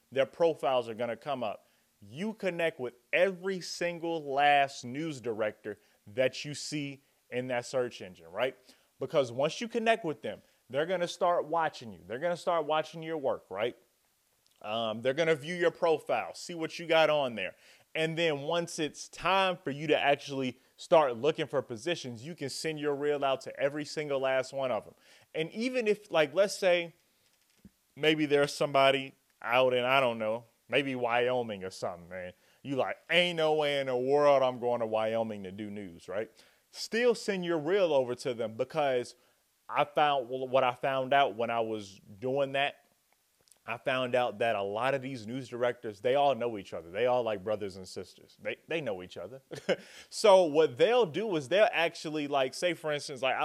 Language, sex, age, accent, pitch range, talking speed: English, male, 30-49, American, 120-160 Hz, 190 wpm